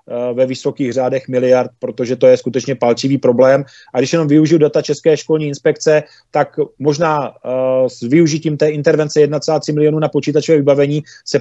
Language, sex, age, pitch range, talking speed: Czech, male, 30-49, 135-155 Hz, 165 wpm